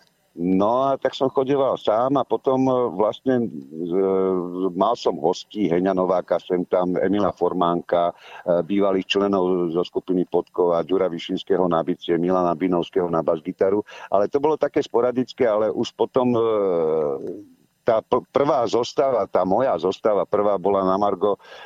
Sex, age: male, 50-69